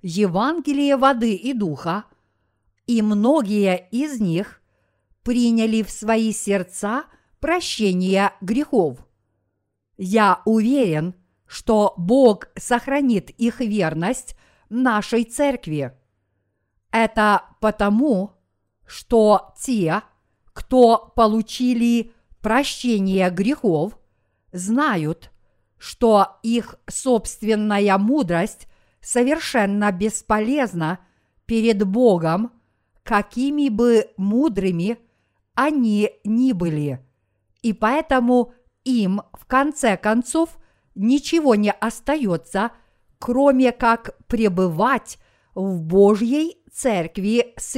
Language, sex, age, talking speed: Russian, female, 50-69, 80 wpm